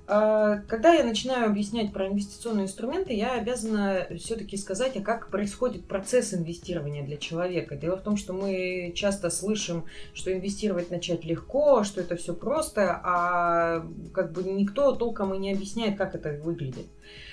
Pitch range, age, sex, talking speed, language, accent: 180-225 Hz, 30-49, female, 150 wpm, Russian, native